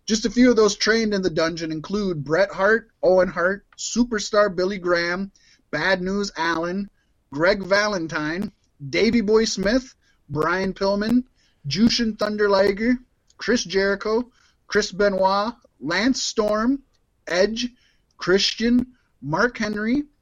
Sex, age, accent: male, 30-49, American